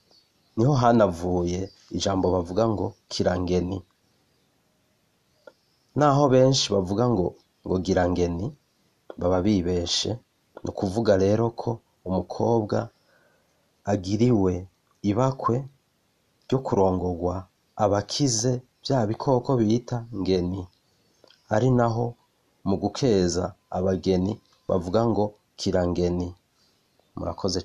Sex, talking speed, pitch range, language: male, 70 wpm, 90-110 Hz, Swahili